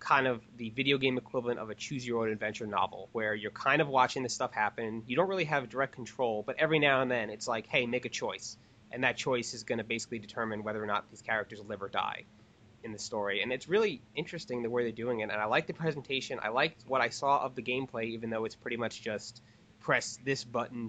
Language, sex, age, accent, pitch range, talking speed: English, male, 20-39, American, 110-125 Hz, 255 wpm